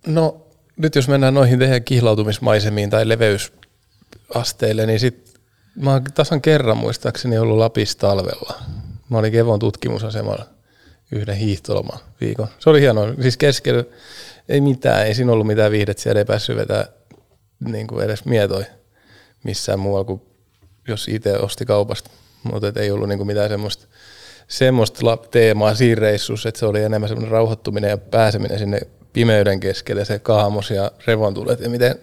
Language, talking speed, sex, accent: Finnish, 140 wpm, male, native